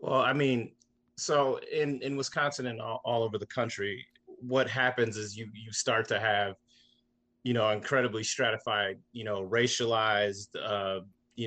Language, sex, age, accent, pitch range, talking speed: English, male, 30-49, American, 105-125 Hz, 155 wpm